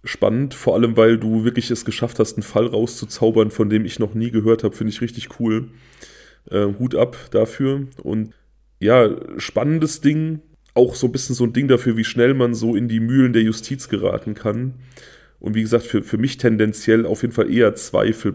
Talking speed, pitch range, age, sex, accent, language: 205 wpm, 105-115 Hz, 30-49, male, German, German